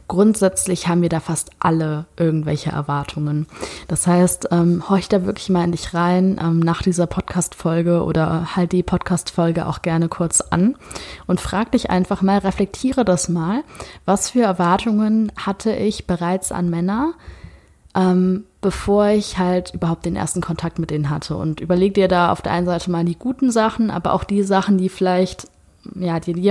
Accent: German